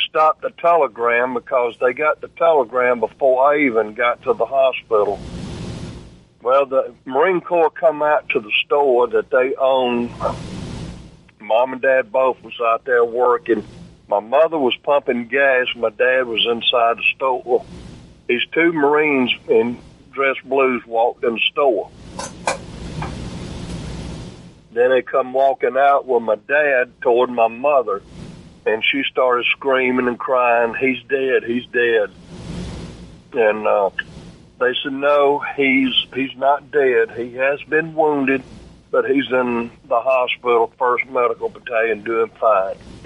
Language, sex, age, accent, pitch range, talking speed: English, male, 50-69, American, 120-145 Hz, 140 wpm